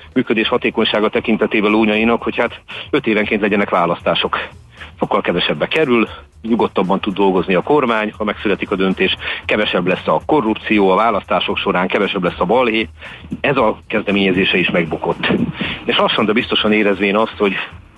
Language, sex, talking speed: Hungarian, male, 150 wpm